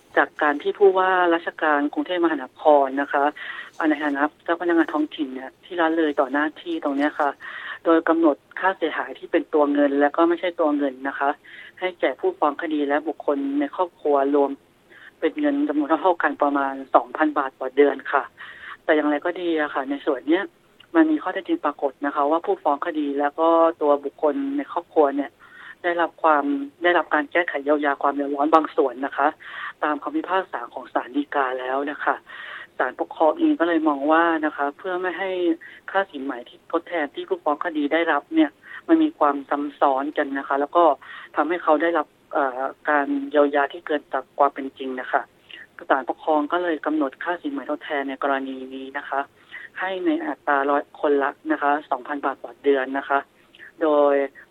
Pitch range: 140-170 Hz